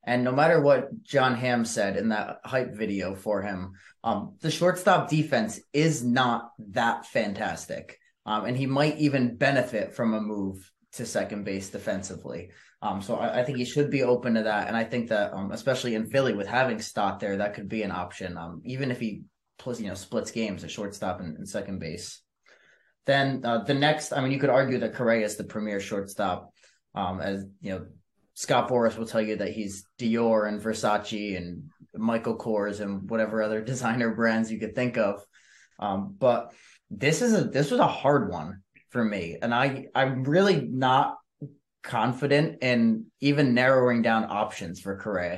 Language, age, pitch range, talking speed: English, 20-39, 105-130 Hz, 190 wpm